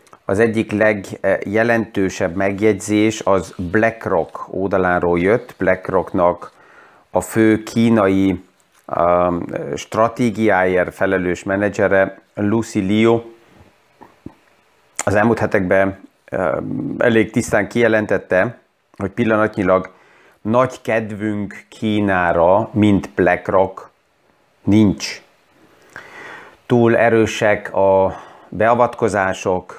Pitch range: 95-110 Hz